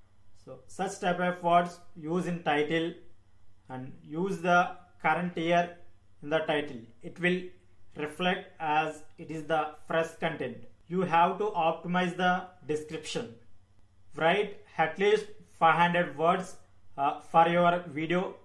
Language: English